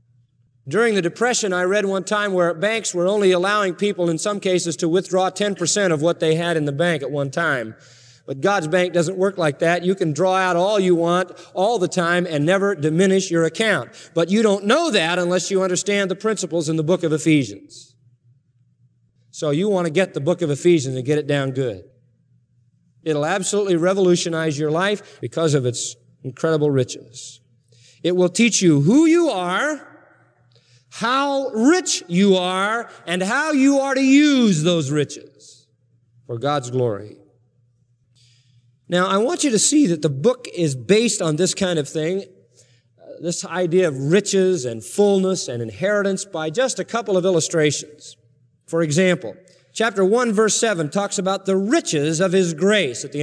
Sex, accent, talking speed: male, American, 175 wpm